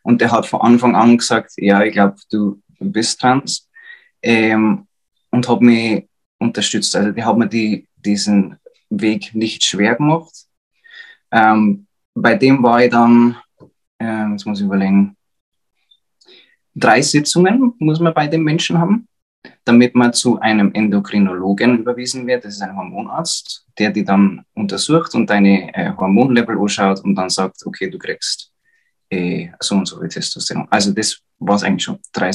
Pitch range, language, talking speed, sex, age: 100-130 Hz, German, 160 wpm, male, 20-39